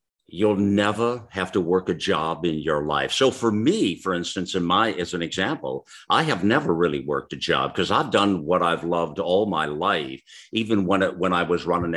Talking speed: 215 wpm